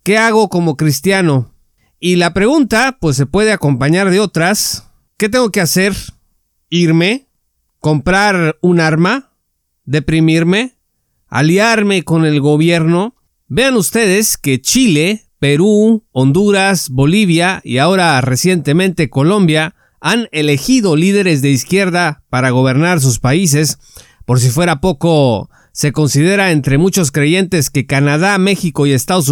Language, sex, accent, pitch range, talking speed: Spanish, male, Mexican, 150-200 Hz, 125 wpm